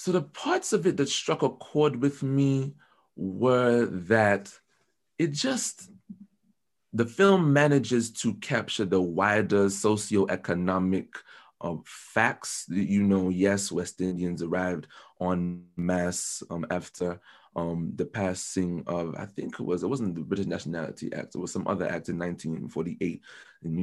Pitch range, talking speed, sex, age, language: 90-115 Hz, 145 wpm, male, 30-49, English